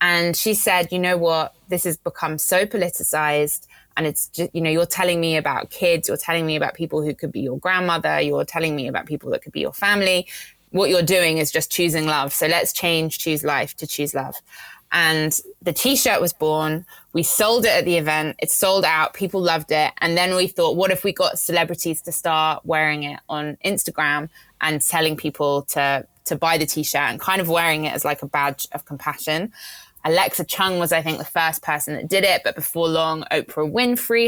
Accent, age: British, 20-39